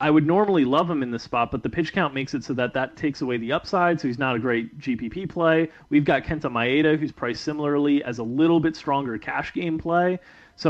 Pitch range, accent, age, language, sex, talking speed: 120-150 Hz, American, 30-49, English, male, 245 wpm